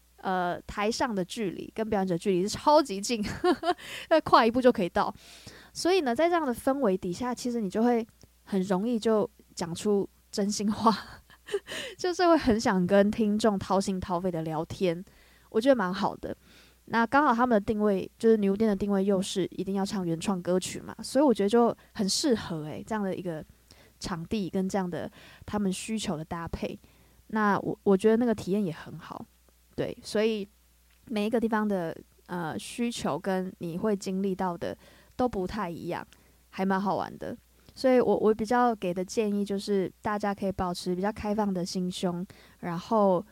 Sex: female